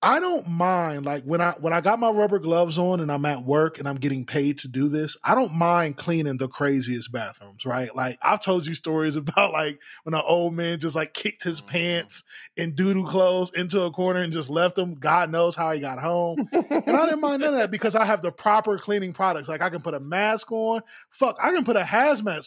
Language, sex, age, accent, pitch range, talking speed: English, male, 20-39, American, 155-210 Hz, 245 wpm